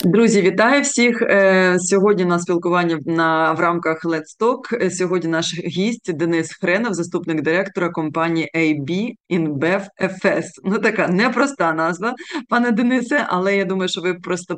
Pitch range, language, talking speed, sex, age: 165-195 Hz, Ukrainian, 130 wpm, female, 20-39